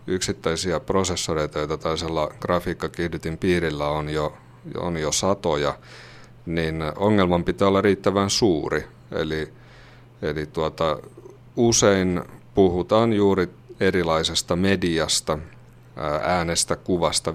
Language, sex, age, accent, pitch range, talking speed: Finnish, male, 30-49, native, 80-95 Hz, 90 wpm